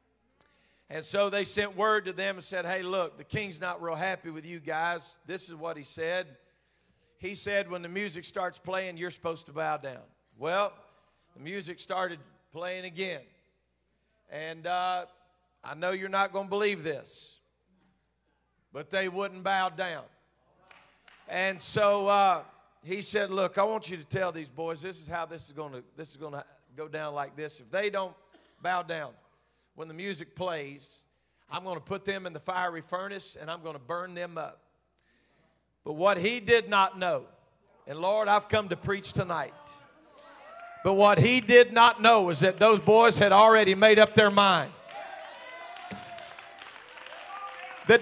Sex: male